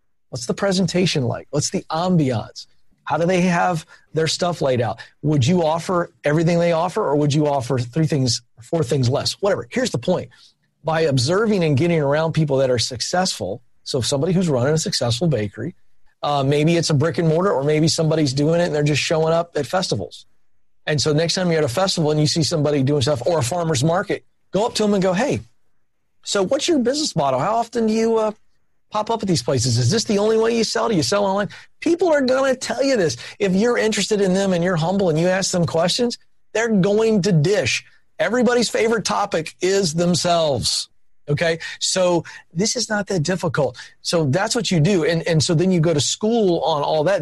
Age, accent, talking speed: 40-59, American, 220 wpm